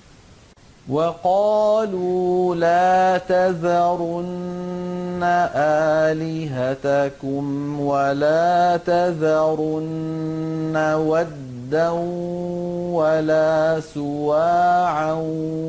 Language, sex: Arabic, male